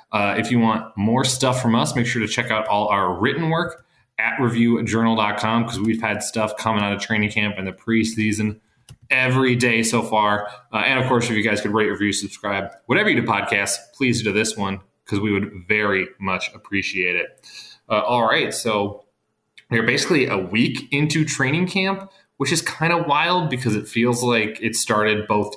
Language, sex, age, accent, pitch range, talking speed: English, male, 20-39, American, 105-130 Hz, 195 wpm